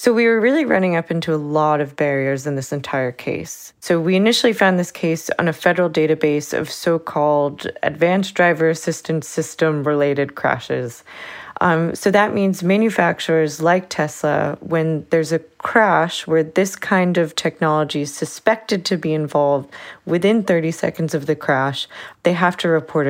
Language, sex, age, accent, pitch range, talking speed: English, female, 20-39, American, 145-175 Hz, 165 wpm